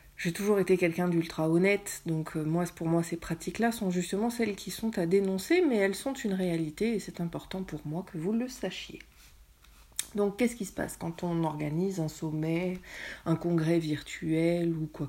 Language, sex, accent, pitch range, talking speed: French, female, French, 155-200 Hz, 190 wpm